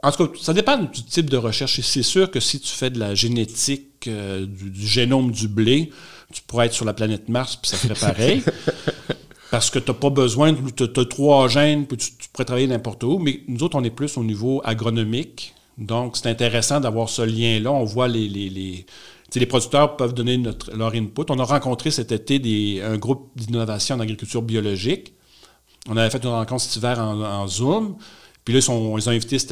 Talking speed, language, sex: 220 wpm, French, male